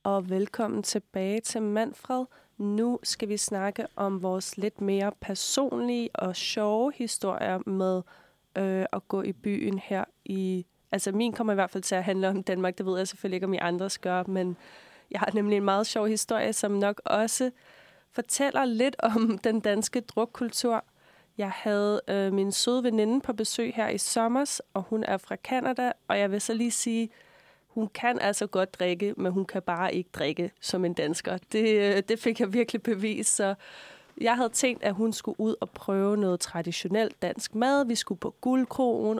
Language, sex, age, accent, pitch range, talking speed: Danish, female, 20-39, native, 190-230 Hz, 185 wpm